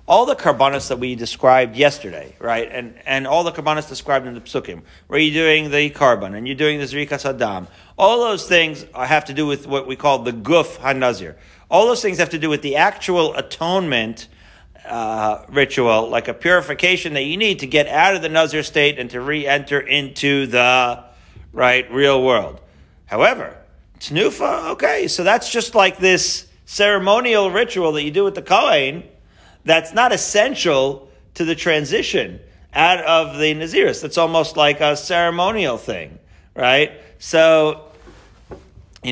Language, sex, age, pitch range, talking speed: English, male, 40-59, 125-160 Hz, 165 wpm